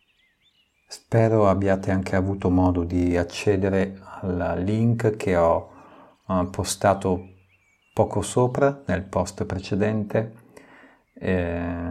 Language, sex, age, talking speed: Italian, male, 50-69, 90 wpm